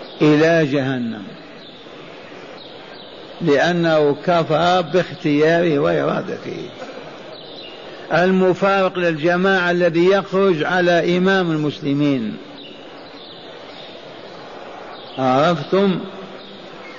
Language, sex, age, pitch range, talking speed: Arabic, male, 50-69, 150-180 Hz, 50 wpm